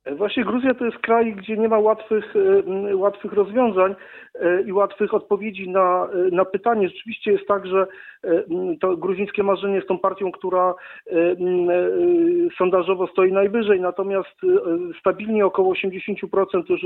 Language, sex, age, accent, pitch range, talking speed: Polish, male, 40-59, native, 180-205 Hz, 130 wpm